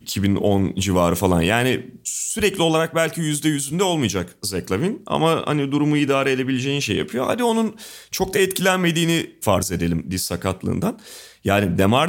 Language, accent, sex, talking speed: Turkish, native, male, 145 wpm